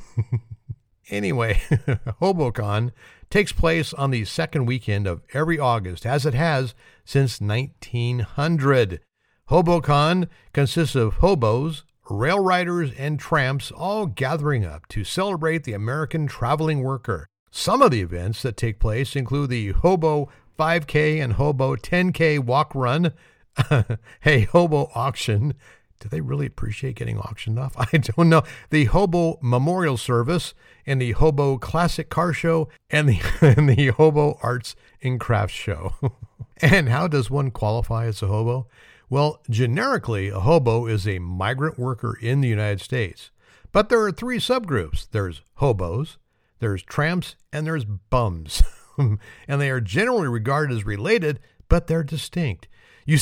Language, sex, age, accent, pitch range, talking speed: English, male, 50-69, American, 115-155 Hz, 140 wpm